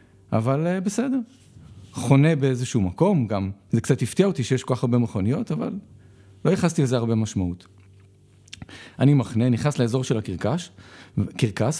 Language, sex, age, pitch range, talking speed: Hebrew, male, 40-59, 105-145 Hz, 140 wpm